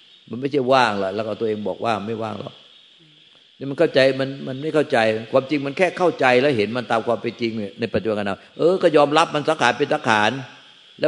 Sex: male